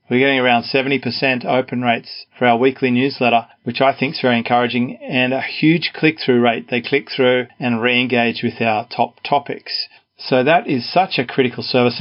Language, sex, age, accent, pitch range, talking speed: English, male, 40-59, Australian, 120-135 Hz, 185 wpm